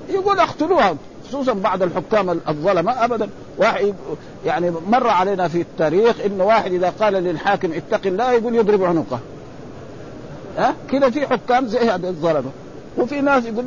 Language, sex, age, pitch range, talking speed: Arabic, male, 50-69, 180-240 Hz, 150 wpm